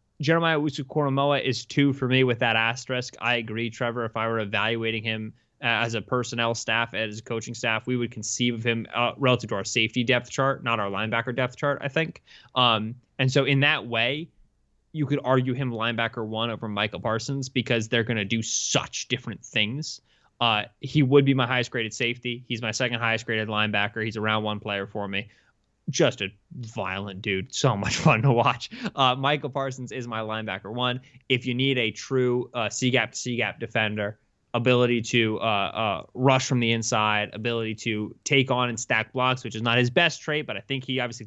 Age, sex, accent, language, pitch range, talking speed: 20-39, male, American, English, 110-130 Hz, 200 wpm